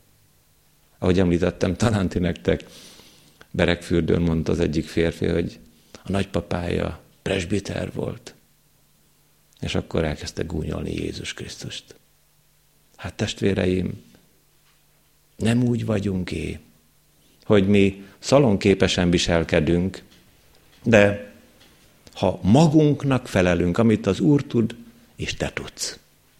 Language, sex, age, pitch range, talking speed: Hungarian, male, 50-69, 85-110 Hz, 95 wpm